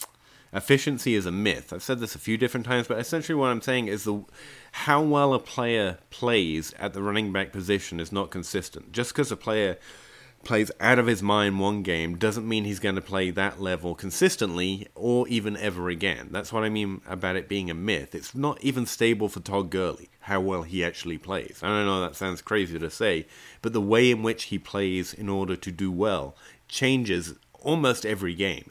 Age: 30-49